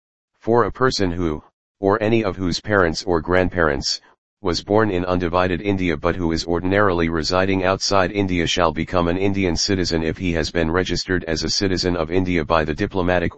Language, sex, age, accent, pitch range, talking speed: English, male, 40-59, American, 85-95 Hz, 185 wpm